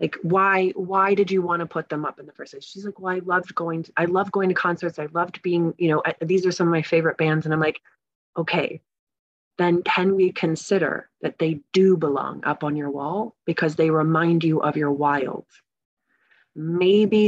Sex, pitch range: female, 155-185 Hz